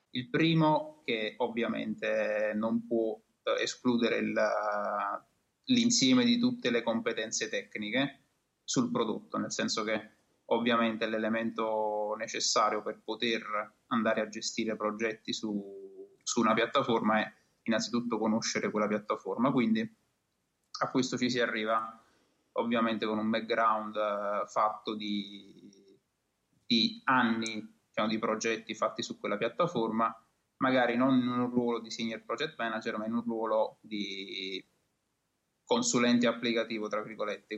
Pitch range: 110-120 Hz